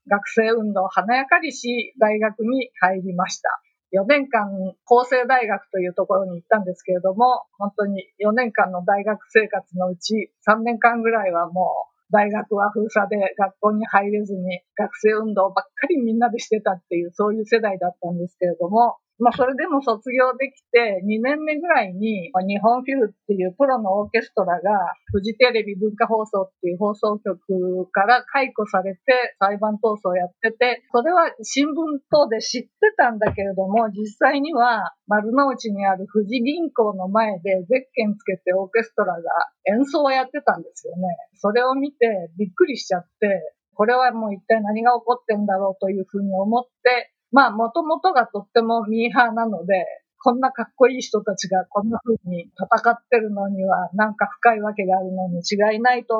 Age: 50-69